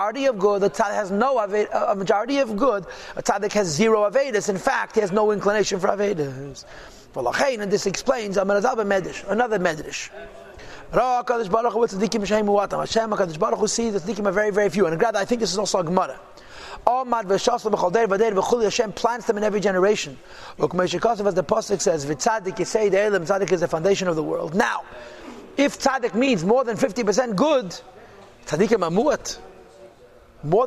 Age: 30-49